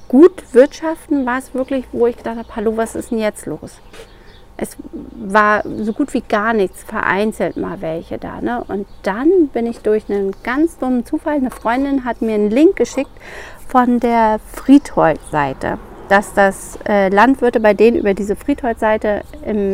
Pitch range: 215-275 Hz